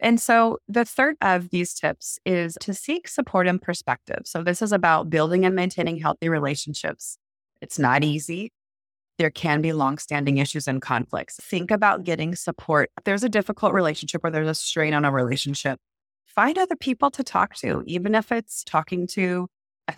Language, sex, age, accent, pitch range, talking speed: English, female, 30-49, American, 145-185 Hz, 175 wpm